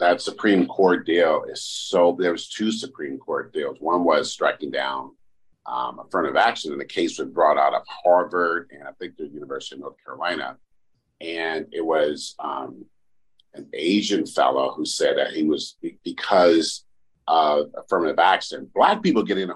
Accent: American